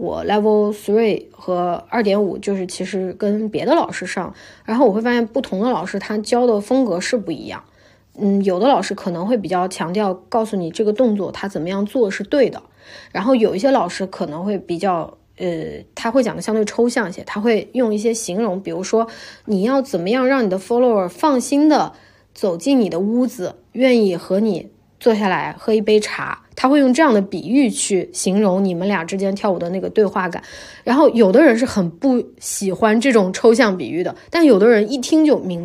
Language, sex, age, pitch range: Chinese, female, 20-39, 185-240 Hz